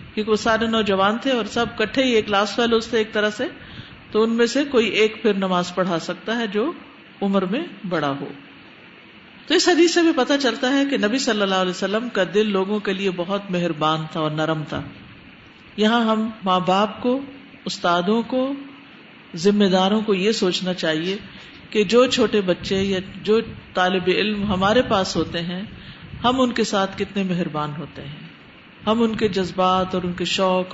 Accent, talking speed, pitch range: Indian, 170 wpm, 185-240 Hz